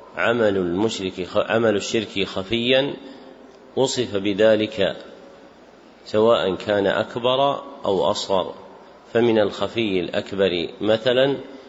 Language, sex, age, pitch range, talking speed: Arabic, male, 40-59, 100-120 Hz, 80 wpm